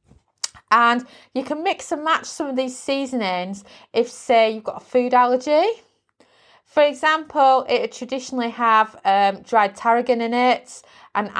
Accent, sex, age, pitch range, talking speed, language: British, female, 30-49, 200-260 Hz, 145 wpm, English